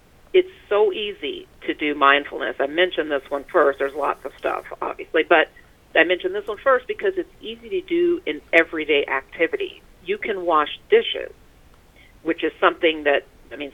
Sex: female